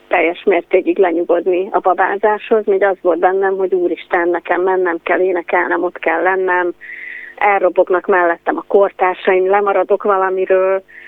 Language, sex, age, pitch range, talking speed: Hungarian, female, 30-49, 175-200 Hz, 130 wpm